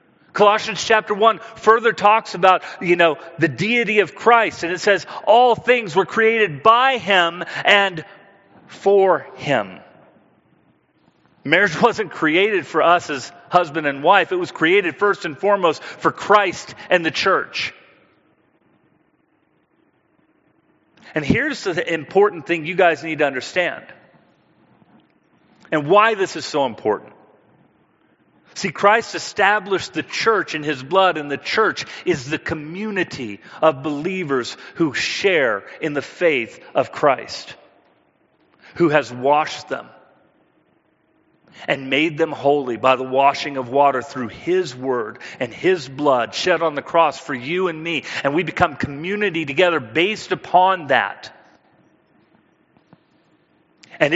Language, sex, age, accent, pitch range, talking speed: English, male, 40-59, American, 155-205 Hz, 130 wpm